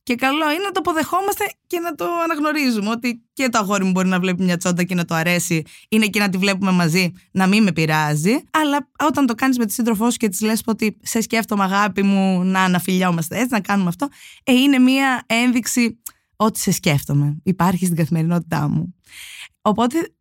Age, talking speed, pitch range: 20-39, 205 wpm, 175-250 Hz